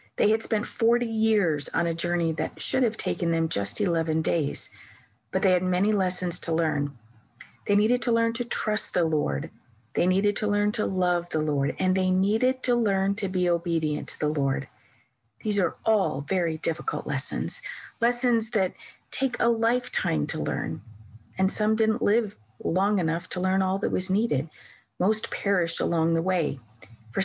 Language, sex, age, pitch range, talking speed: English, female, 40-59, 150-205 Hz, 180 wpm